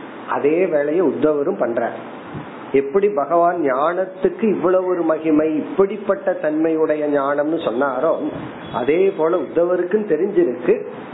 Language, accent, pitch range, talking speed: Tamil, native, 145-200 Hz, 90 wpm